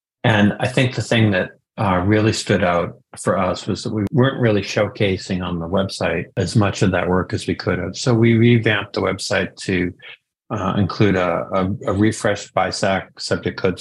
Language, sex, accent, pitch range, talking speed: English, male, American, 90-100 Hz, 190 wpm